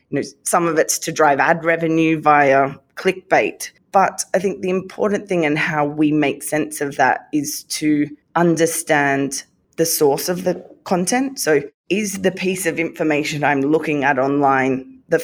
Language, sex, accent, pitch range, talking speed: English, female, Australian, 145-175 Hz, 160 wpm